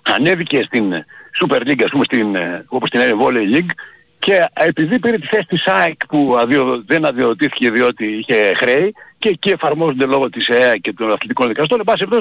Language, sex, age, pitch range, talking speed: Greek, male, 60-79, 165-235 Hz, 170 wpm